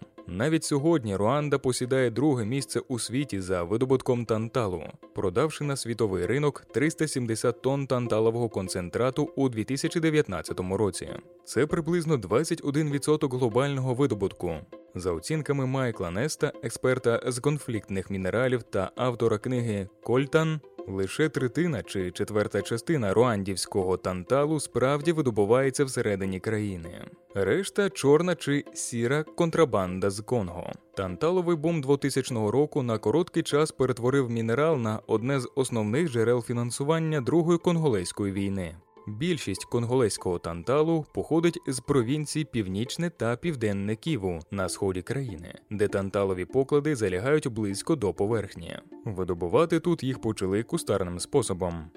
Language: Ukrainian